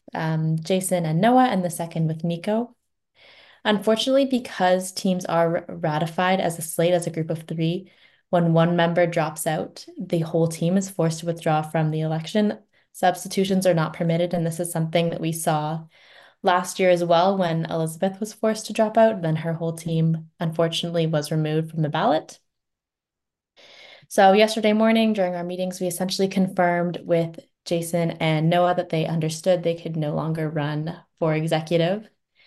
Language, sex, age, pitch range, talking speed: English, female, 10-29, 165-200 Hz, 170 wpm